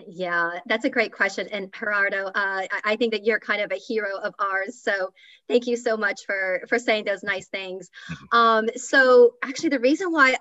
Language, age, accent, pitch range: English, 30-49, American, 195-245 Hz